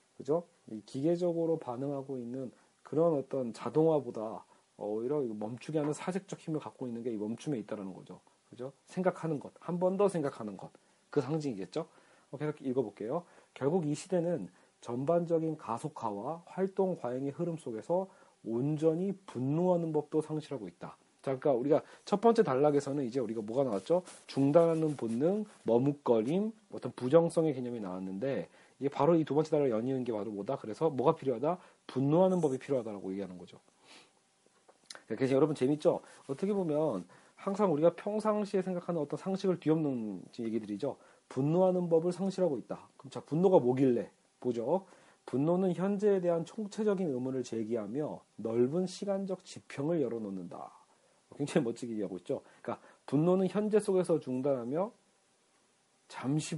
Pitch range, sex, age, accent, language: 125-175 Hz, male, 40-59, native, Korean